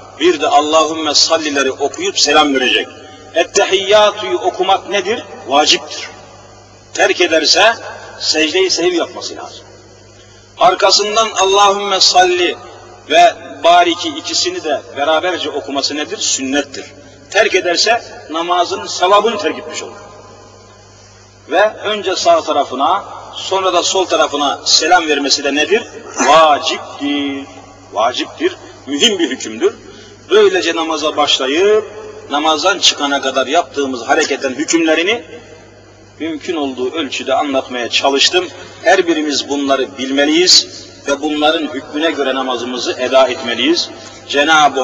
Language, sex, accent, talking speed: Turkish, male, native, 105 wpm